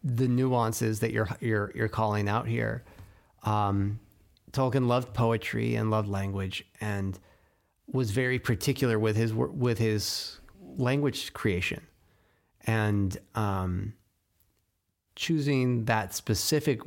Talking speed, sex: 110 wpm, male